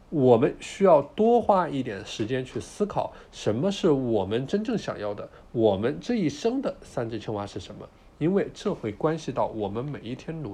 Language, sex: Chinese, male